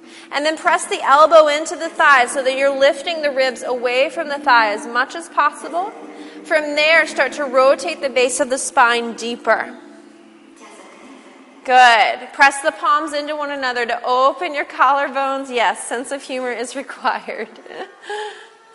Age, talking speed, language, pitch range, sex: 30-49, 160 wpm, English, 240-295 Hz, female